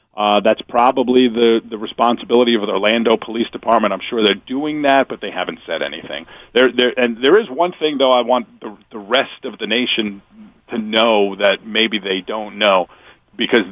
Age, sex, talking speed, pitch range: 50-69, male, 195 wpm, 100-120 Hz